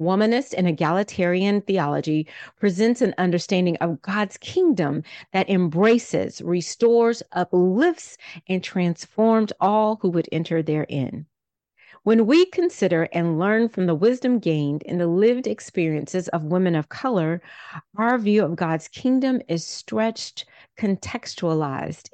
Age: 40-59